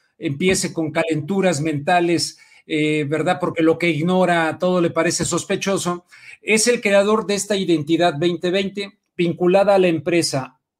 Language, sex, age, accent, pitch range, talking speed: Spanish, male, 50-69, Mexican, 160-195 Hz, 140 wpm